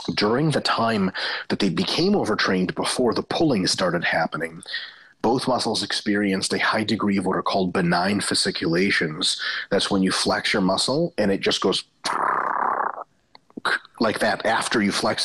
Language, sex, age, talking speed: English, male, 30-49, 155 wpm